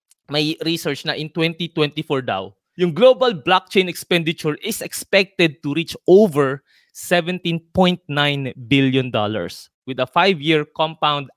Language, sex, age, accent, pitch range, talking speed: Filipino, male, 20-39, native, 135-175 Hz, 115 wpm